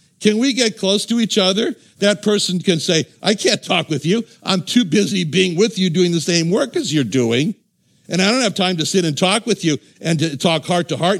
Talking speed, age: 245 wpm, 60-79